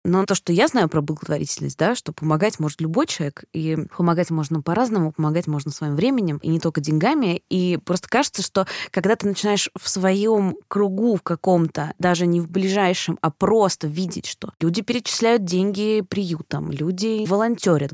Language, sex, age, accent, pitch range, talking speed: Russian, female, 20-39, native, 165-220 Hz, 170 wpm